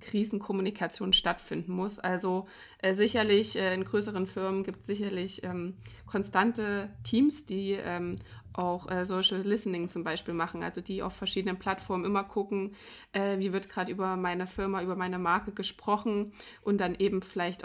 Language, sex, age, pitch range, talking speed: German, female, 20-39, 185-210 Hz, 160 wpm